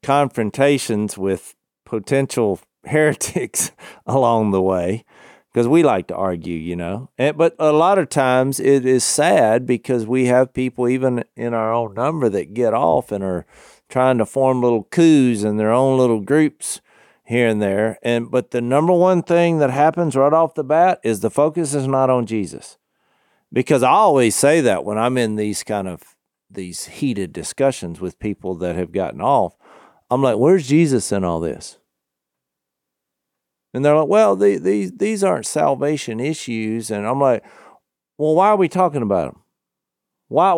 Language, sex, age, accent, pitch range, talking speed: English, male, 50-69, American, 105-150 Hz, 170 wpm